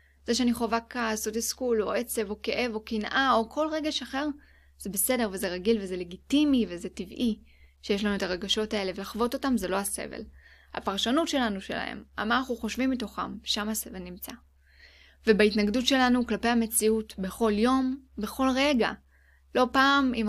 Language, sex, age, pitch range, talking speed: Hebrew, female, 10-29, 200-240 Hz, 165 wpm